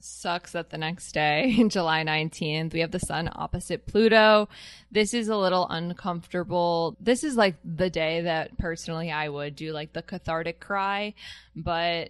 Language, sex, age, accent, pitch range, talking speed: English, female, 10-29, American, 160-185 Hz, 165 wpm